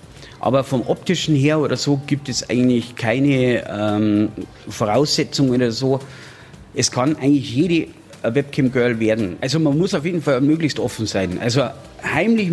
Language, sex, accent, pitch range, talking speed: German, male, German, 115-145 Hz, 150 wpm